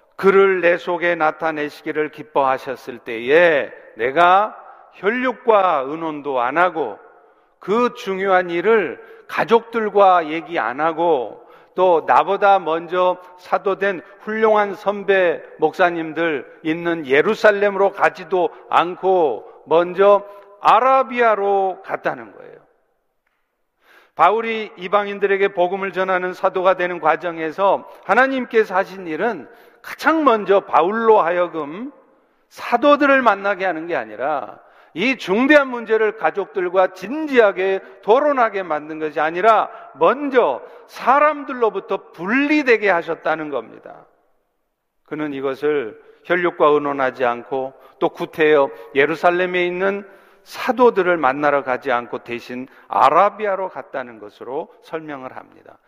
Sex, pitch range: male, 160-220 Hz